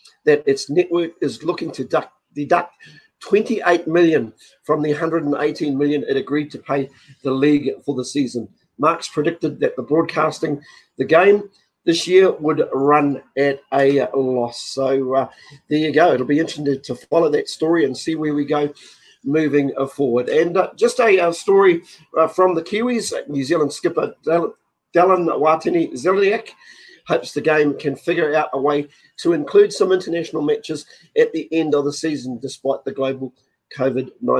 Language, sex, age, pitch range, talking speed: English, male, 50-69, 145-175 Hz, 165 wpm